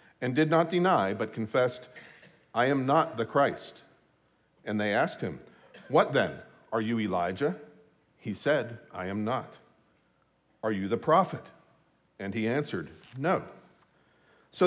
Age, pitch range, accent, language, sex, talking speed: 50-69, 110-155 Hz, American, English, male, 140 wpm